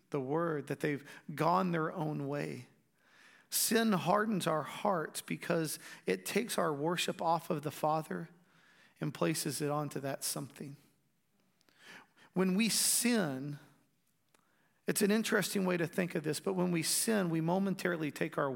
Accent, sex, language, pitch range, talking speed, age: American, male, English, 150-190 Hz, 150 wpm, 40-59